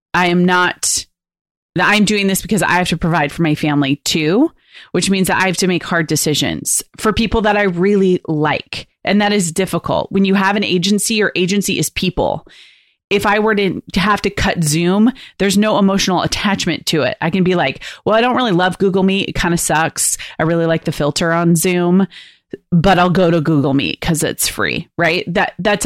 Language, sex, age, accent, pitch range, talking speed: English, female, 30-49, American, 165-195 Hz, 215 wpm